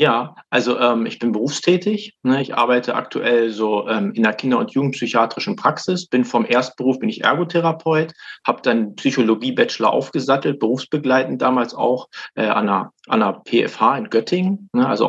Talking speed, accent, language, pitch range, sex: 165 wpm, German, German, 115-145 Hz, male